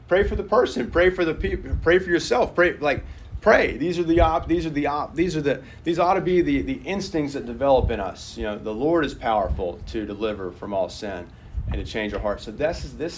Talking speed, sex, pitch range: 255 wpm, male, 105-145 Hz